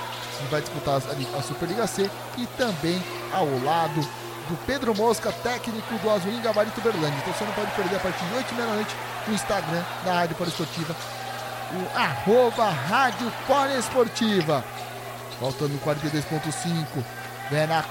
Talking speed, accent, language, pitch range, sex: 145 wpm, Brazilian, Portuguese, 165-210 Hz, male